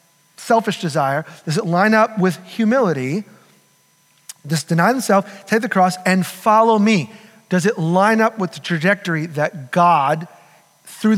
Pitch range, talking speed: 160-215 Hz, 145 wpm